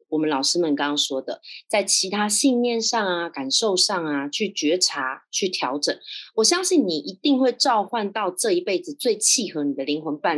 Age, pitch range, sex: 20-39, 175-285 Hz, female